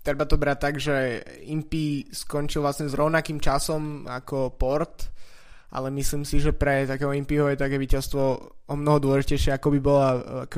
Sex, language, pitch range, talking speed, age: male, Slovak, 135-145 Hz, 170 wpm, 20-39